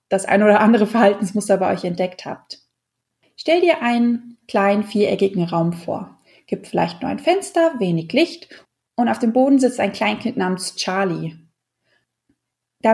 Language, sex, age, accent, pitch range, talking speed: German, female, 20-39, German, 190-250 Hz, 155 wpm